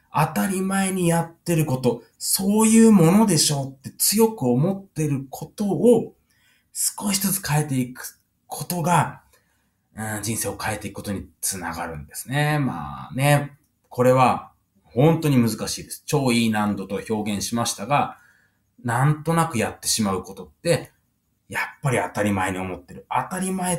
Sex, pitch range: male, 110-170 Hz